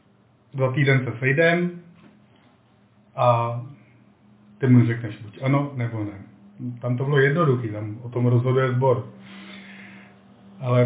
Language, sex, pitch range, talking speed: Czech, male, 115-135 Hz, 120 wpm